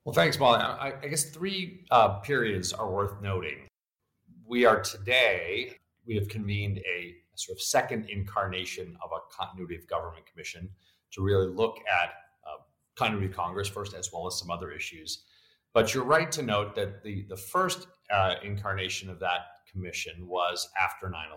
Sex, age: male, 40-59